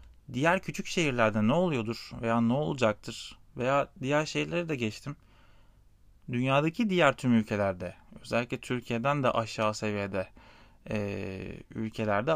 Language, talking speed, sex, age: Turkish, 115 wpm, male, 30-49